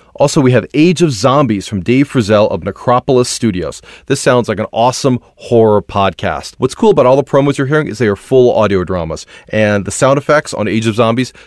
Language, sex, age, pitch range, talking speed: English, male, 30-49, 100-135 Hz, 215 wpm